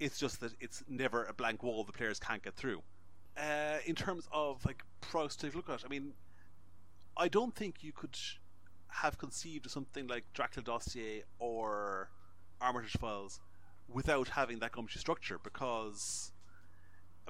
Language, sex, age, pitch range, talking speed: English, male, 30-49, 90-130 Hz, 155 wpm